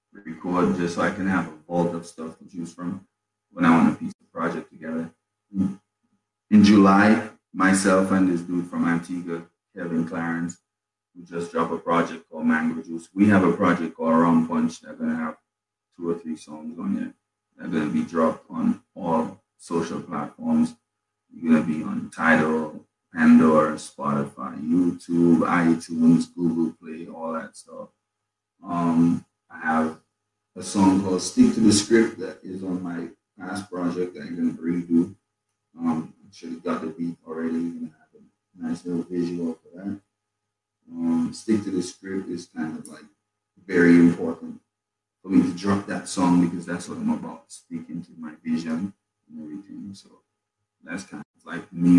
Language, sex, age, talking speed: English, male, 30-49, 175 wpm